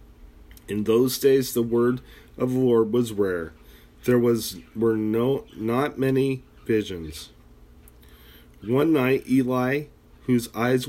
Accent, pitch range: American, 80-125 Hz